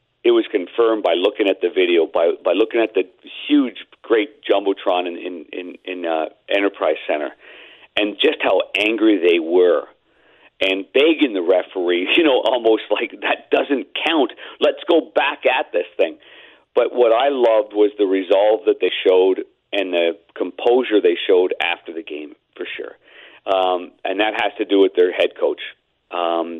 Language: English